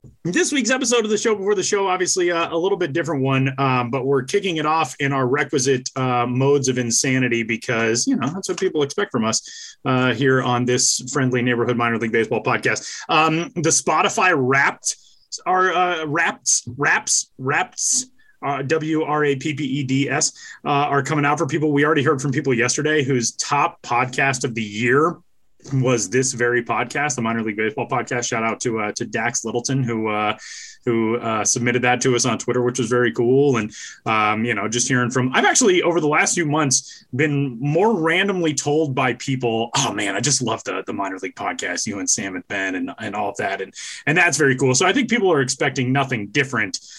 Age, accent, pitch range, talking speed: 20-39, American, 120-155 Hz, 210 wpm